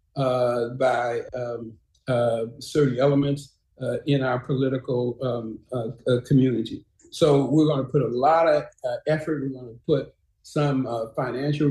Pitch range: 125-145 Hz